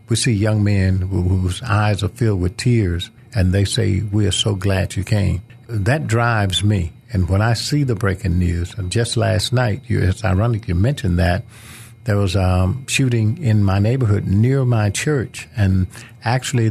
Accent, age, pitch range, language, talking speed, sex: American, 50-69, 100-120 Hz, English, 180 wpm, male